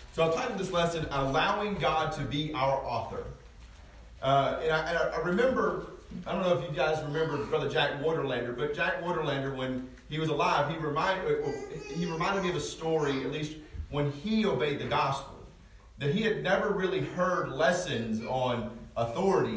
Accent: American